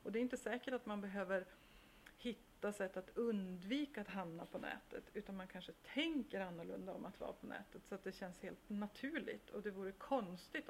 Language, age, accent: Swedish, 40-59, native